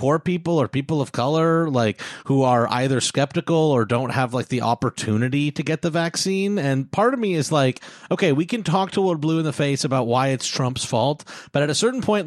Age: 30-49